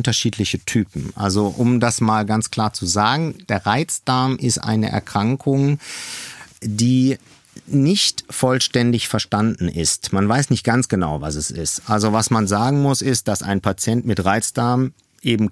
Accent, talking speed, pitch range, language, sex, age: German, 155 wpm, 105-130 Hz, German, male, 50-69